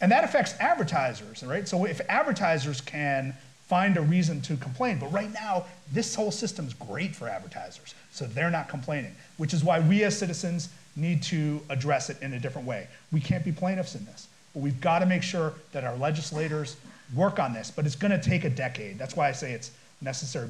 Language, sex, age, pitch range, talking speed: English, male, 40-59, 140-190 Hz, 205 wpm